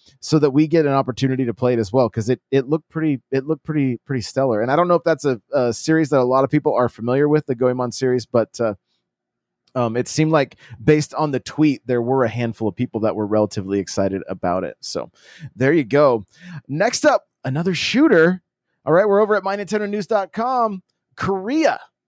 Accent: American